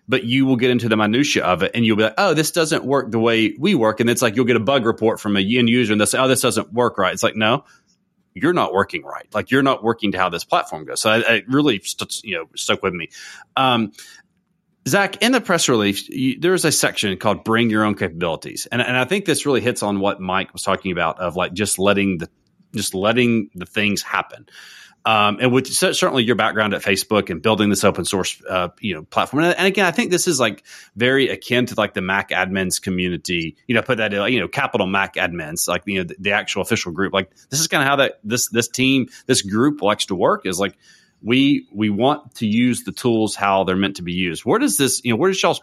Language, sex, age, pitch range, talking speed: English, male, 30-49, 100-135 Hz, 250 wpm